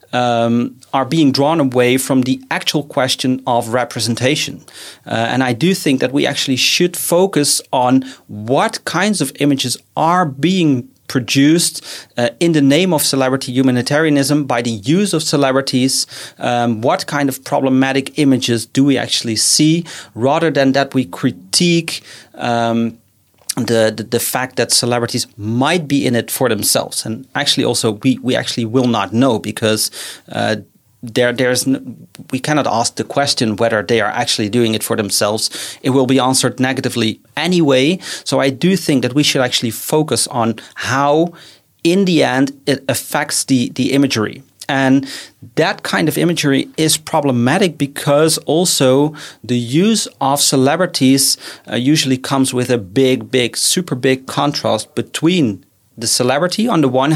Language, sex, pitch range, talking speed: English, male, 120-150 Hz, 155 wpm